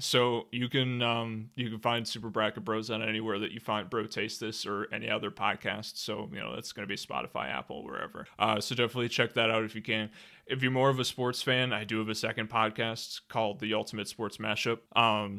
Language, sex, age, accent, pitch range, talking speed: English, male, 20-39, American, 105-125 Hz, 235 wpm